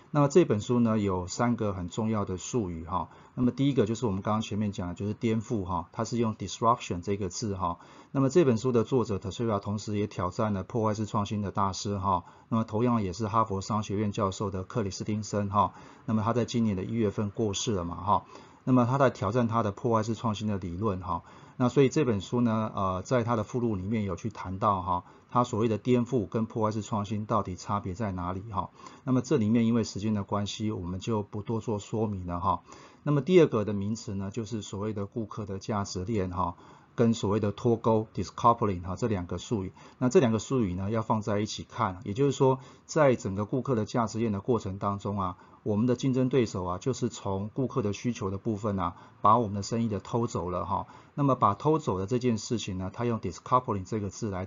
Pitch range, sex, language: 100-120 Hz, male, Chinese